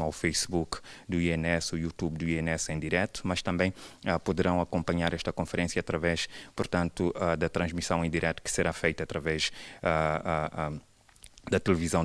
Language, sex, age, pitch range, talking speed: Portuguese, male, 30-49, 80-90 Hz, 150 wpm